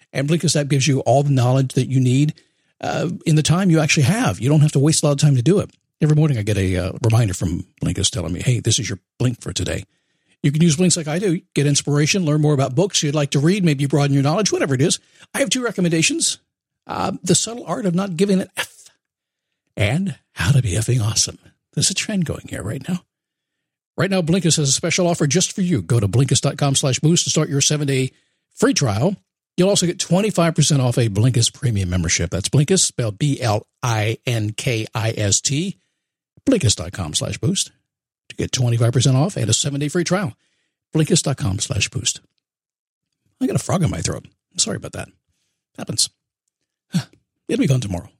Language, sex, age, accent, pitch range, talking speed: English, male, 50-69, American, 120-165 Hz, 200 wpm